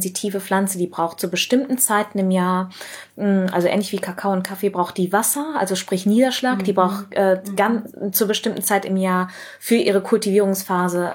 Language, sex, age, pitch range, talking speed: German, female, 20-39, 180-205 Hz, 170 wpm